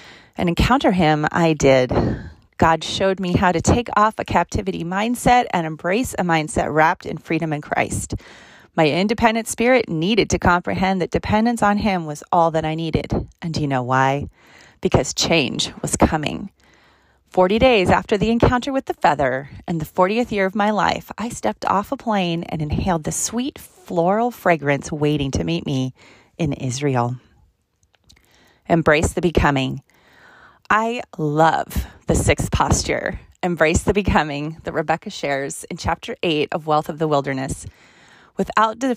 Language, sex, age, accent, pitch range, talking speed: English, female, 30-49, American, 150-205 Hz, 160 wpm